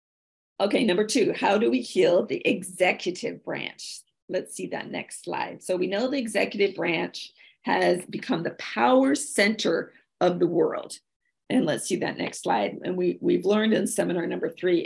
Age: 40-59